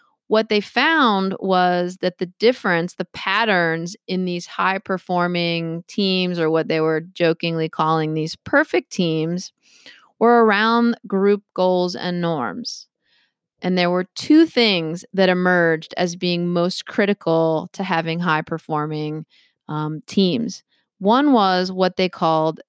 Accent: American